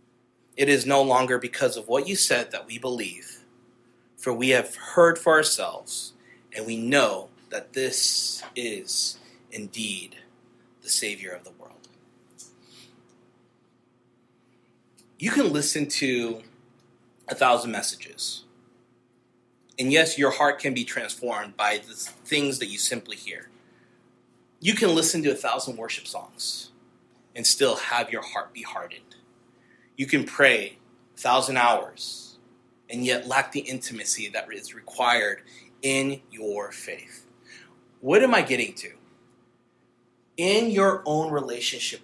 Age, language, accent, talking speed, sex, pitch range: 30-49, English, American, 130 wpm, male, 120-140 Hz